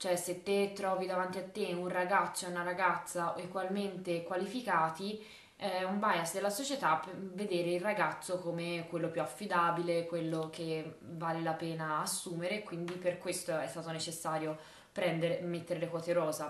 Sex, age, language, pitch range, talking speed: female, 20-39, Italian, 165-185 Hz, 155 wpm